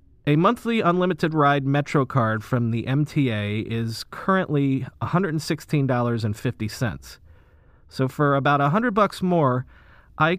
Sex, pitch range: male, 115-155 Hz